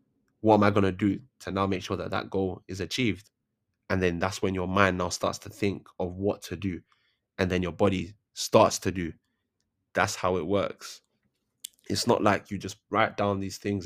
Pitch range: 95-110 Hz